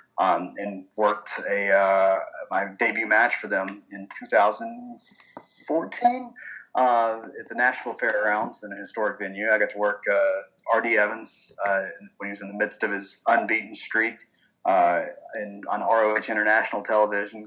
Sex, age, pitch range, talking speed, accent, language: male, 20-39, 100-115 Hz, 155 wpm, American, English